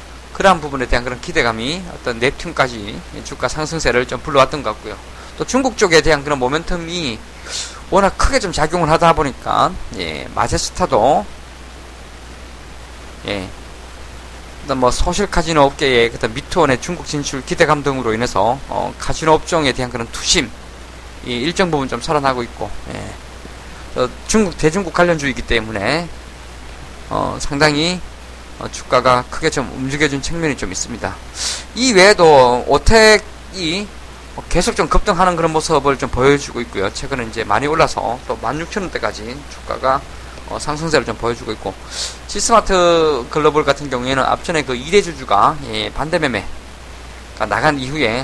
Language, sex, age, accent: Korean, male, 20-39, native